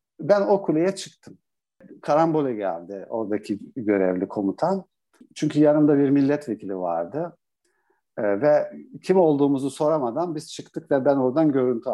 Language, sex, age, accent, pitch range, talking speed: Turkish, male, 60-79, native, 135-190 Hz, 120 wpm